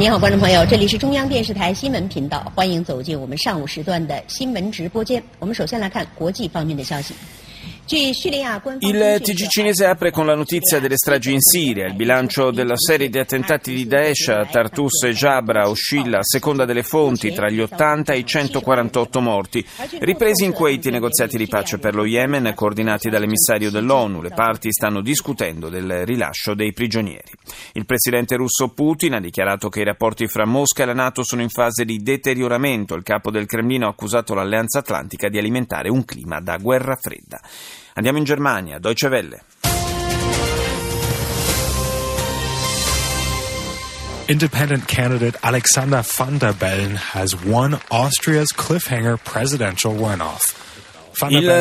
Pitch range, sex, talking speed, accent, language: 105-145 Hz, male, 110 wpm, native, Italian